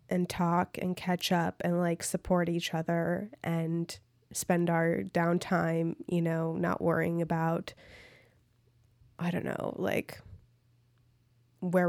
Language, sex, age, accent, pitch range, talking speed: English, female, 20-39, American, 125-185 Hz, 120 wpm